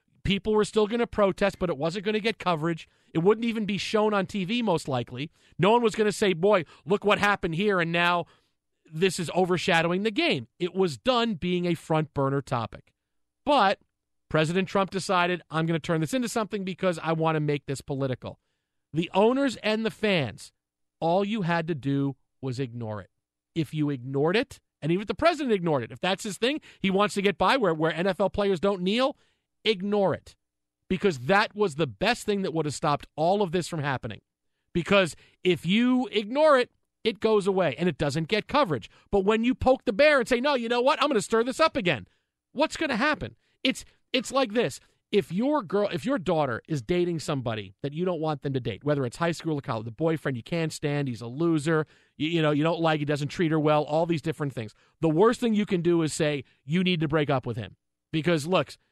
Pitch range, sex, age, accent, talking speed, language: 150-210 Hz, male, 40-59, American, 225 wpm, English